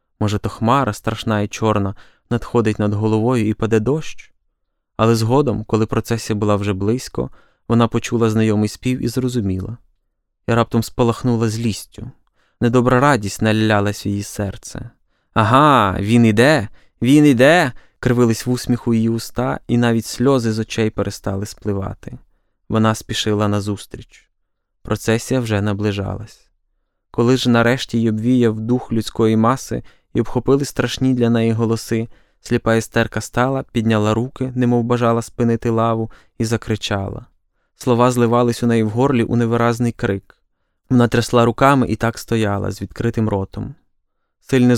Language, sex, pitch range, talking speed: Ukrainian, male, 110-120 Hz, 135 wpm